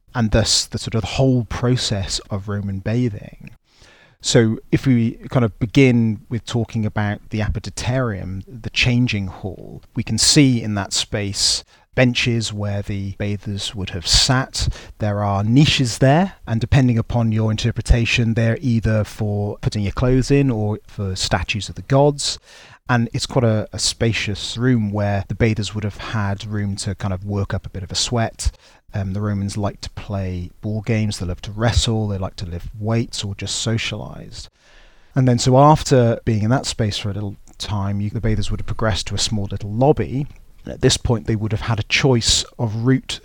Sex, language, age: male, English, 30-49